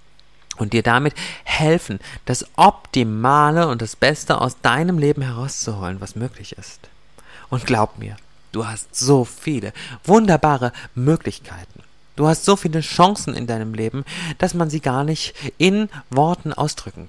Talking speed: 145 wpm